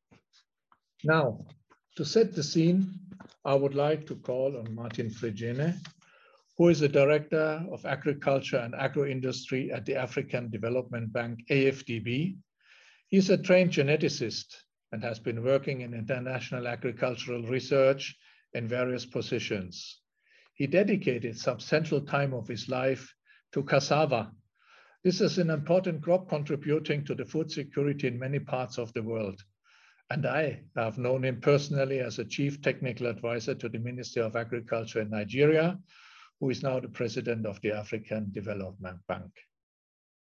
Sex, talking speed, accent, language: male, 145 wpm, German, English